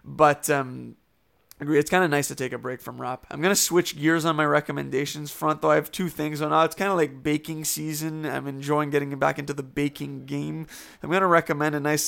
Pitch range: 140-160 Hz